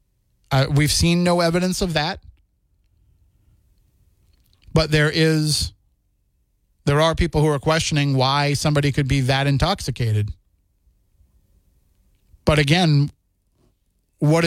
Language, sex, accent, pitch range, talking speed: English, male, American, 100-155 Hz, 105 wpm